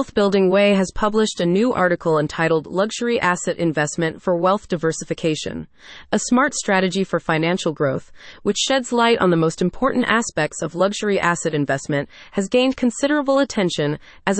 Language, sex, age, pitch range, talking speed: English, female, 30-49, 165-225 Hz, 160 wpm